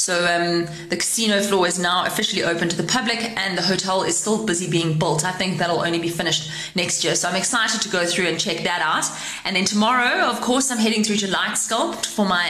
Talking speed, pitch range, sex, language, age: 240 wpm, 160-200 Hz, female, English, 20-39